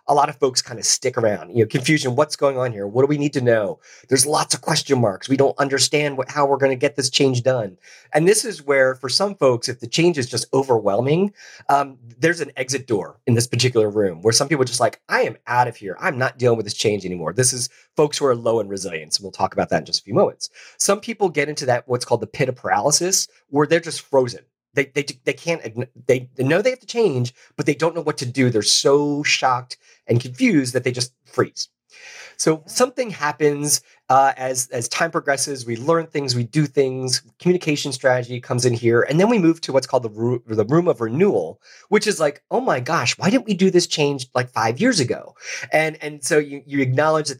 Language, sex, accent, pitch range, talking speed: English, male, American, 125-155 Hz, 245 wpm